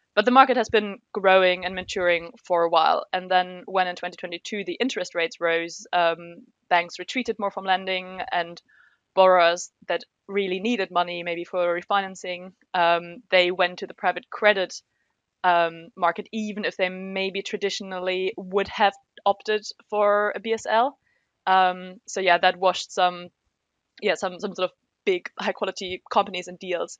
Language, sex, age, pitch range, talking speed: English, female, 20-39, 175-205 Hz, 160 wpm